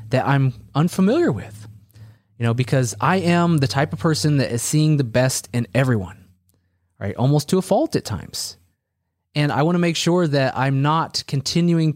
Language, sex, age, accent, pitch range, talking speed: English, male, 20-39, American, 120-160 Hz, 185 wpm